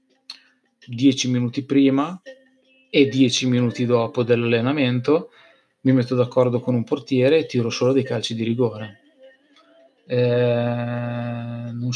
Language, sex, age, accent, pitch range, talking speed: Italian, male, 20-39, native, 125-145 Hz, 115 wpm